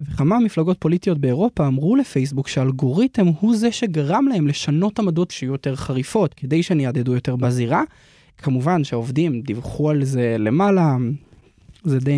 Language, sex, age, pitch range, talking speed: Hebrew, male, 20-39, 135-175 Hz, 135 wpm